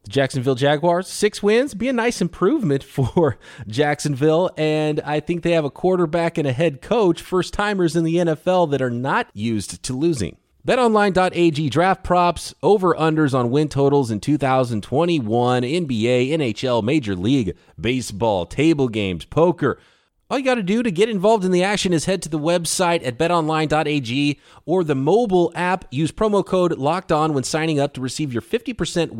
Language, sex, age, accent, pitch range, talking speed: English, male, 30-49, American, 120-170 Hz, 170 wpm